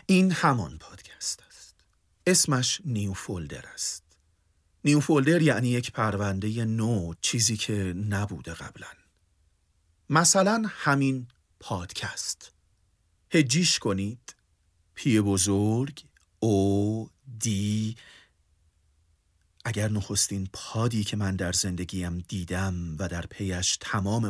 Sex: male